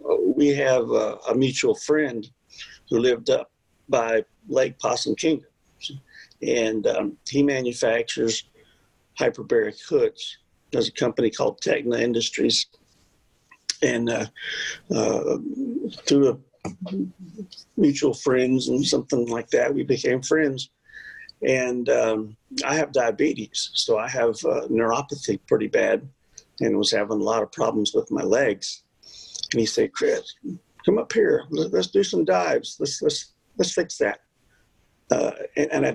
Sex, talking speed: male, 135 wpm